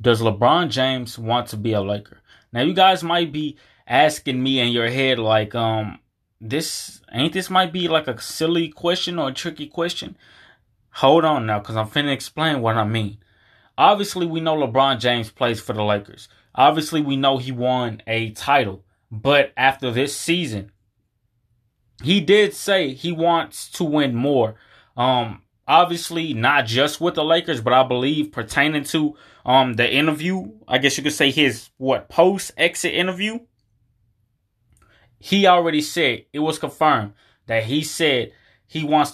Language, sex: English, male